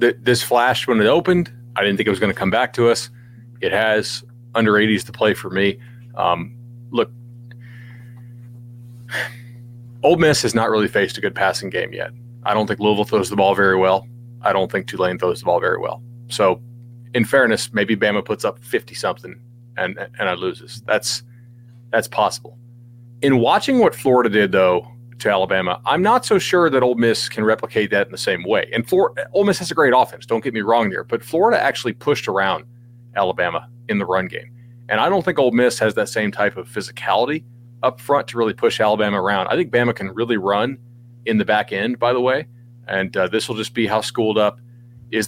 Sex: male